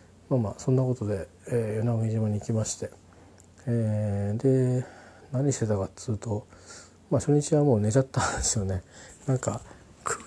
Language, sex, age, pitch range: Japanese, male, 40-59, 110-140 Hz